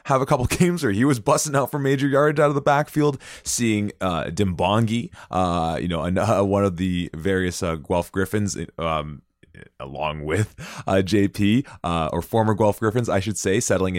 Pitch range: 85-105 Hz